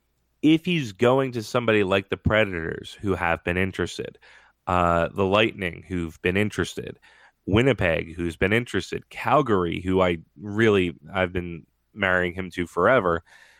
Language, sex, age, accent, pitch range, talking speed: English, male, 30-49, American, 85-110 Hz, 140 wpm